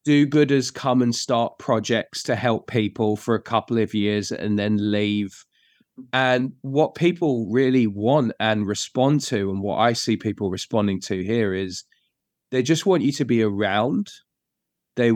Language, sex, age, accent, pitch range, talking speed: English, male, 20-39, British, 105-125 Hz, 170 wpm